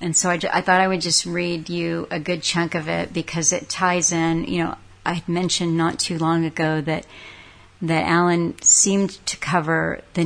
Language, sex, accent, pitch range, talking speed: English, female, American, 165-185 Hz, 205 wpm